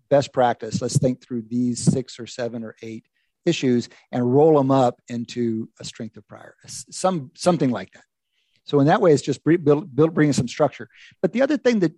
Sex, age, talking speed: male, 50-69, 205 wpm